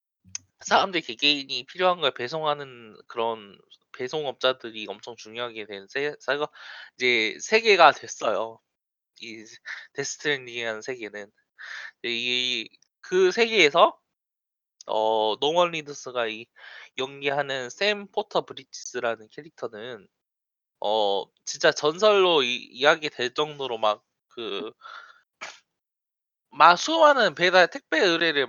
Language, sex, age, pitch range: Korean, male, 20-39, 120-180 Hz